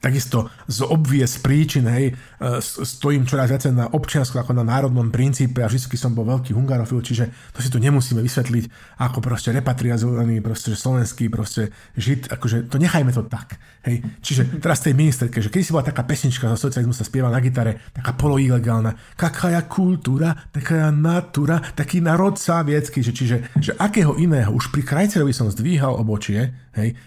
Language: Slovak